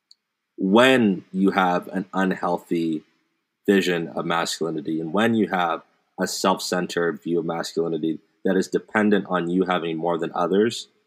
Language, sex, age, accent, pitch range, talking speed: English, male, 30-49, American, 85-105 Hz, 140 wpm